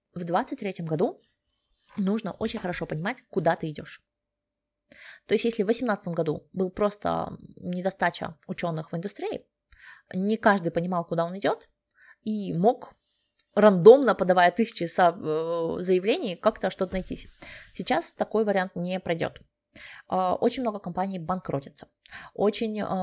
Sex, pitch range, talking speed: female, 170-210 Hz, 125 wpm